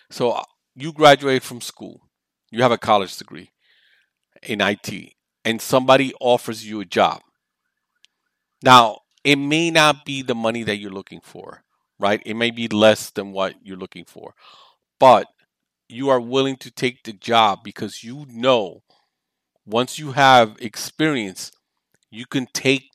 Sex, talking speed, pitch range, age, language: male, 150 wpm, 110-135 Hz, 50-69, English